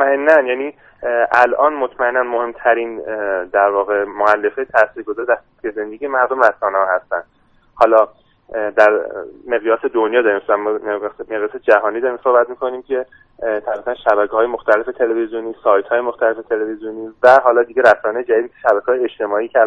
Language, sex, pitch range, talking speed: Persian, male, 110-140 Hz, 125 wpm